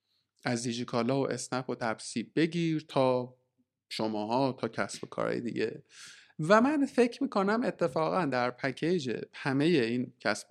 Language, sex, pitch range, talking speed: Persian, male, 120-160 Hz, 145 wpm